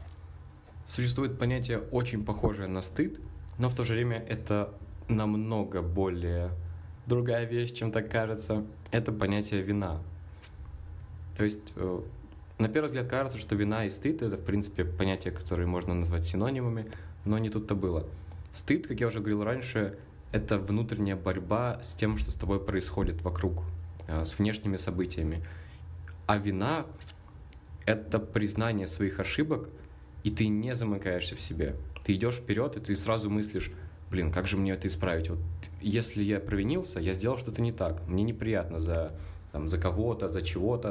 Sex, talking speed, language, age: male, 150 wpm, Russian, 20-39